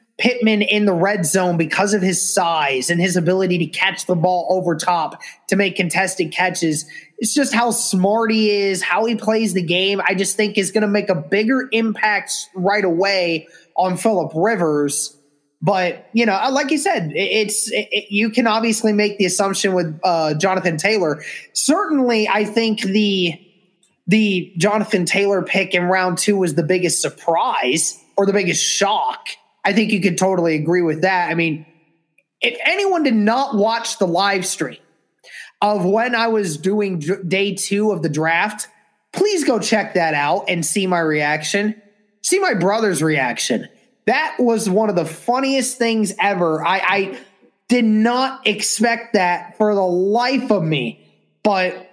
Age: 20-39